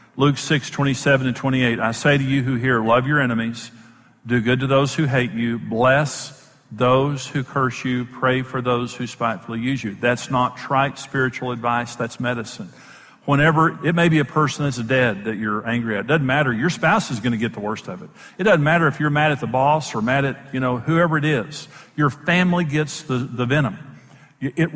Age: 50-69